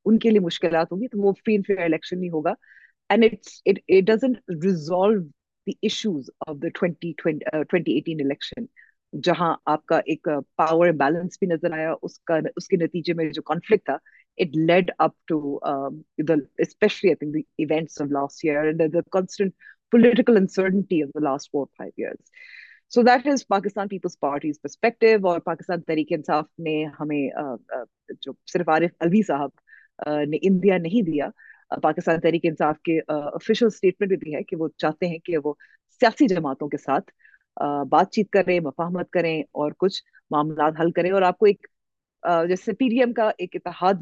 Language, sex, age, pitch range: Urdu, female, 30-49, 155-195 Hz